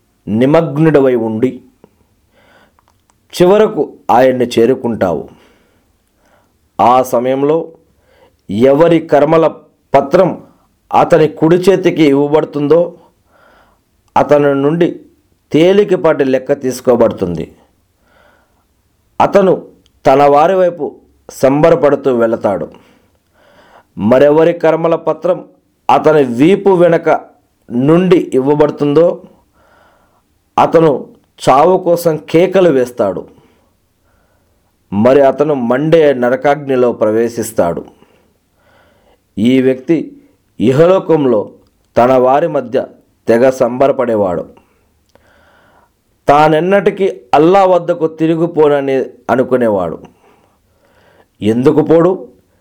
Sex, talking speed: male, 65 wpm